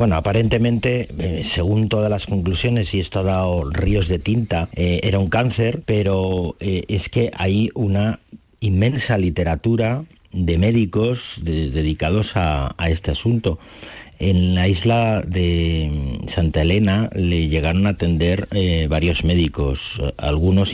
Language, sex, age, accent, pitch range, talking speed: Spanish, male, 40-59, Spanish, 85-105 Hz, 135 wpm